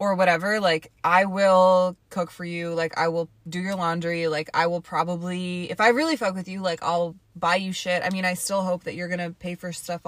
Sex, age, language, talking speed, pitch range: female, 20-39, English, 240 wpm, 165-190 Hz